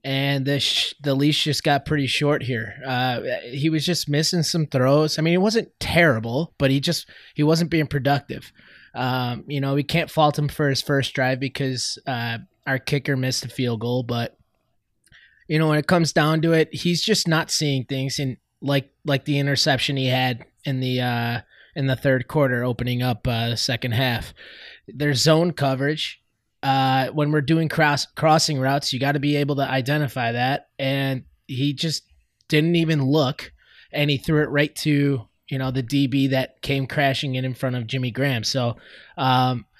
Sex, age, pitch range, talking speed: male, 20-39, 130-155 Hz, 190 wpm